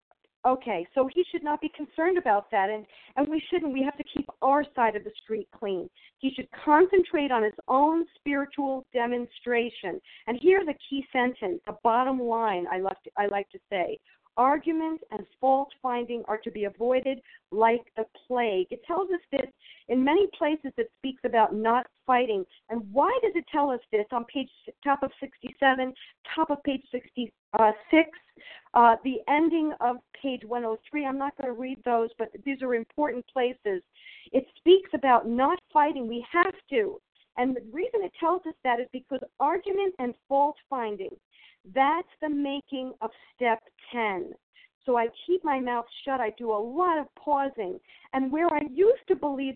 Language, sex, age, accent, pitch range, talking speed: English, female, 50-69, American, 240-330 Hz, 180 wpm